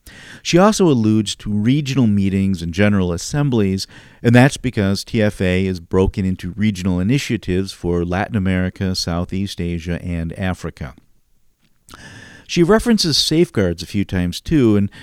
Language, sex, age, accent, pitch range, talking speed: English, male, 50-69, American, 95-130 Hz, 130 wpm